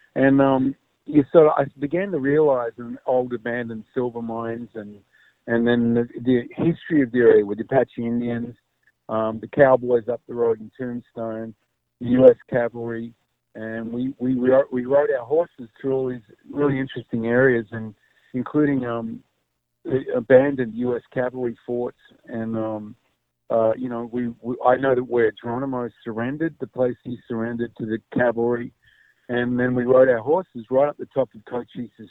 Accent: American